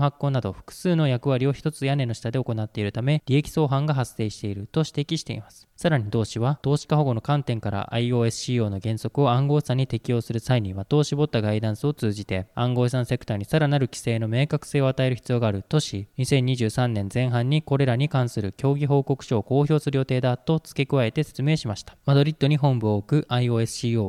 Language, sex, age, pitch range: Japanese, male, 20-39, 115-145 Hz